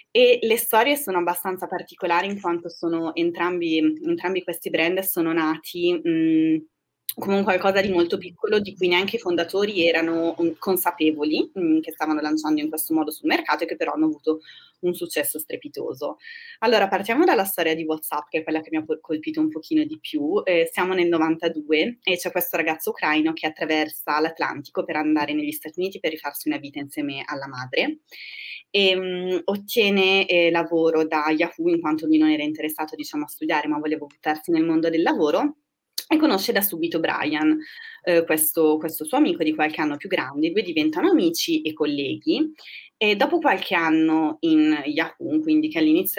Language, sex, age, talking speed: Italian, female, 20-39, 180 wpm